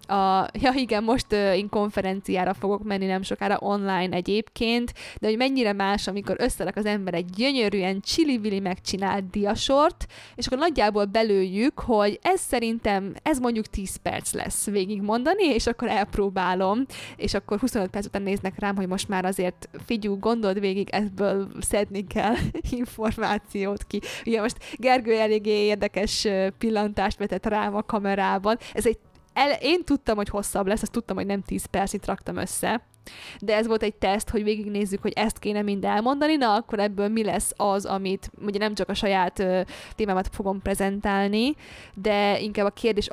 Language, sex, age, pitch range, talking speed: Hungarian, female, 20-39, 195-215 Hz, 165 wpm